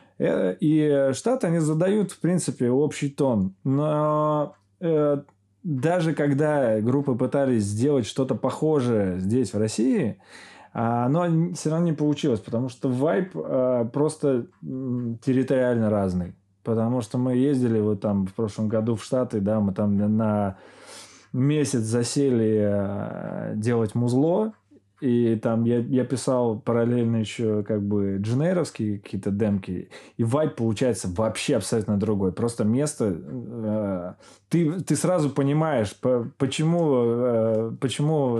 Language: Russian